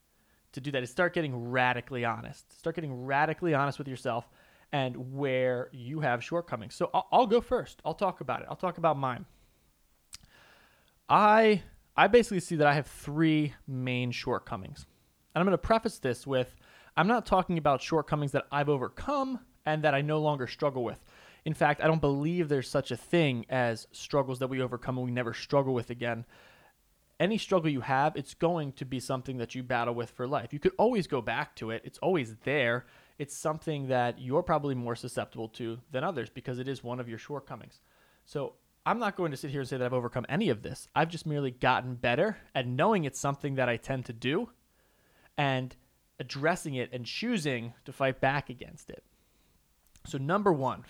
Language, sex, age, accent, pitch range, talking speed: English, male, 20-39, American, 125-155 Hz, 200 wpm